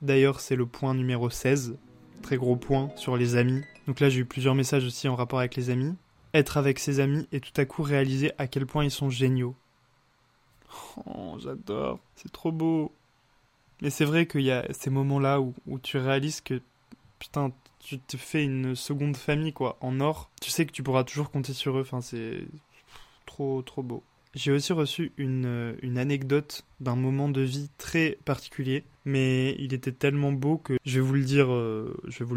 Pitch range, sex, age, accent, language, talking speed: 130-140 Hz, male, 20-39, French, French, 200 wpm